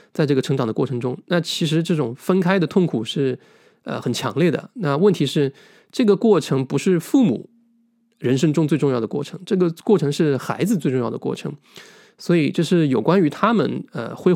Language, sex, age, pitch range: Chinese, male, 20-39, 135-180 Hz